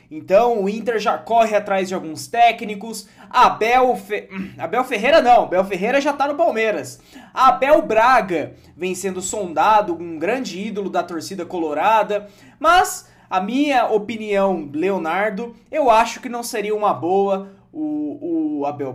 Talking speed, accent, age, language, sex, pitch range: 150 wpm, Brazilian, 20-39, Portuguese, male, 185-250 Hz